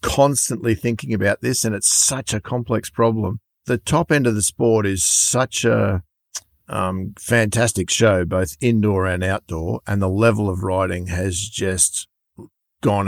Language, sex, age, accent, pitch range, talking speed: English, male, 50-69, Australian, 95-110 Hz, 155 wpm